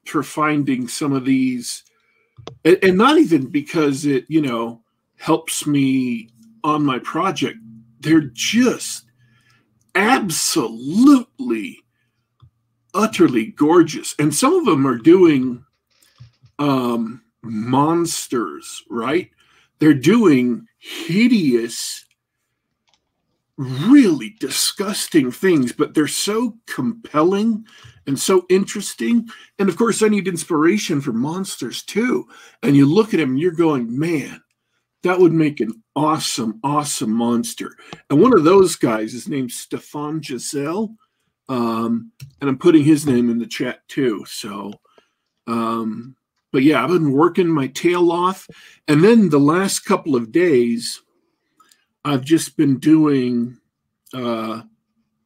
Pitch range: 120-195 Hz